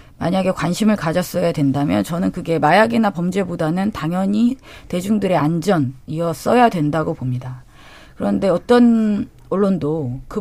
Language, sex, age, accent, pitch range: Korean, female, 30-49, native, 155-225 Hz